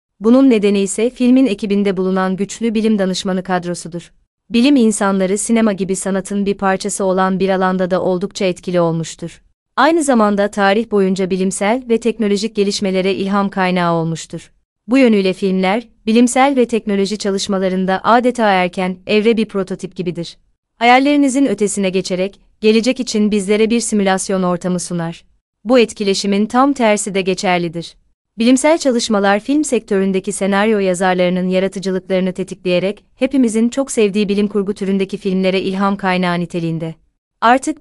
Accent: native